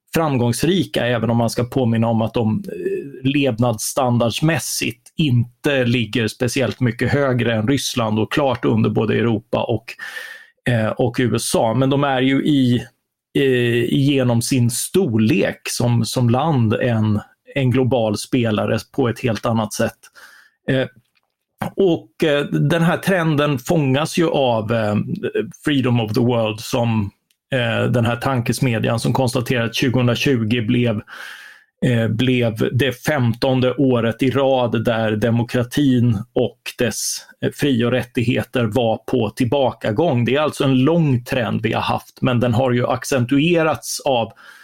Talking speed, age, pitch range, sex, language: 135 wpm, 30-49, 115-135 Hz, male, Swedish